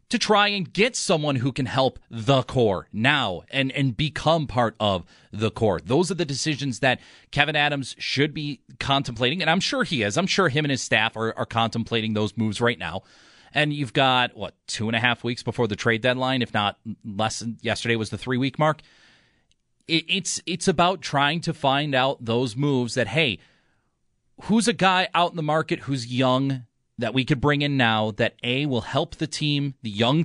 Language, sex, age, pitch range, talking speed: English, male, 30-49, 120-160 Hz, 205 wpm